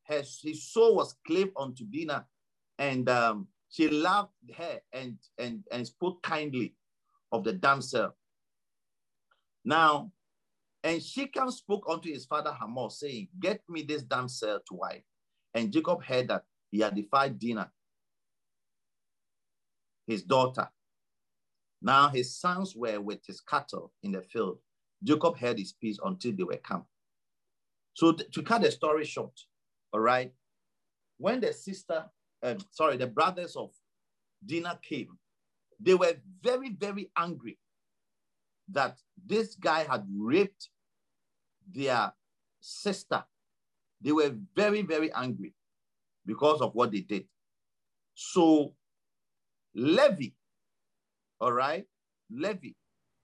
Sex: male